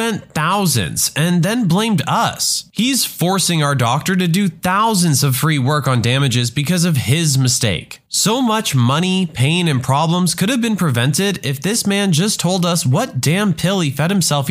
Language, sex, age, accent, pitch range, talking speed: English, male, 20-39, American, 130-200 Hz, 180 wpm